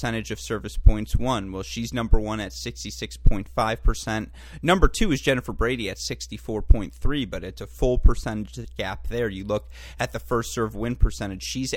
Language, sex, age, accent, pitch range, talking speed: English, male, 30-49, American, 105-125 Hz, 170 wpm